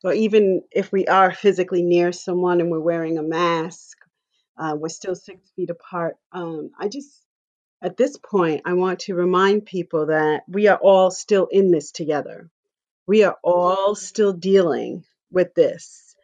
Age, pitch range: 40-59, 175-210 Hz